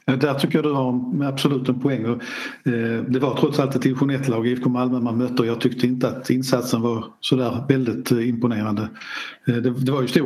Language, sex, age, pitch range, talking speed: Swedish, male, 50-69, 120-140 Hz, 235 wpm